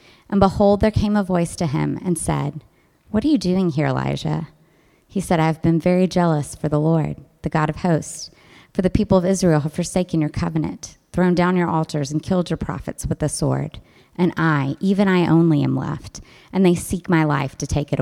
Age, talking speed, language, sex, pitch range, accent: 30-49, 215 wpm, English, female, 150-180 Hz, American